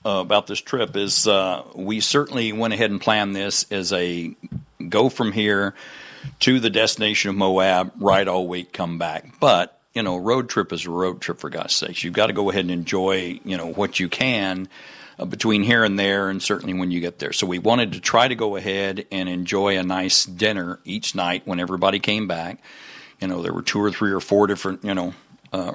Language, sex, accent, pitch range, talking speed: English, male, American, 95-110 Hz, 220 wpm